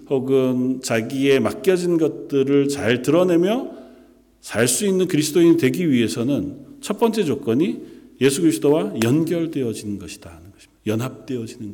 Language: Korean